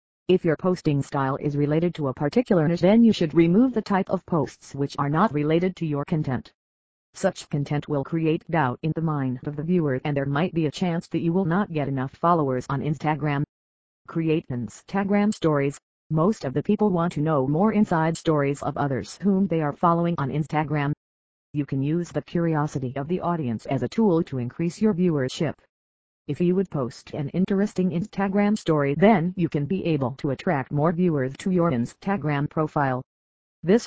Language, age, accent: English, 40-59, American